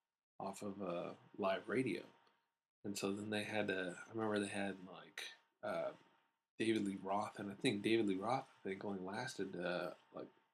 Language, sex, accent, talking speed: English, male, American, 180 wpm